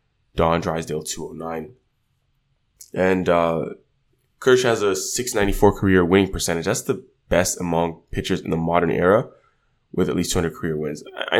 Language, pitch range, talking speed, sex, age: English, 85-100 Hz, 145 wpm, male, 20-39